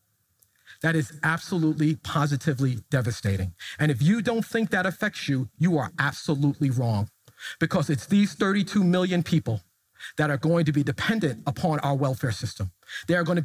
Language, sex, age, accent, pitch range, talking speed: English, male, 40-59, American, 120-175 Hz, 160 wpm